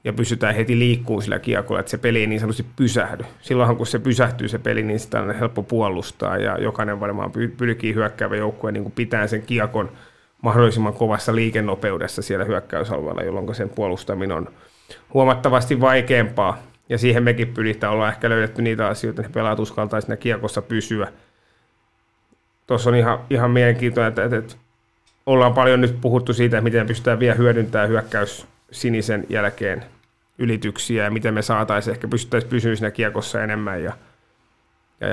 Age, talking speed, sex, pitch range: 30-49, 155 wpm, male, 110-120 Hz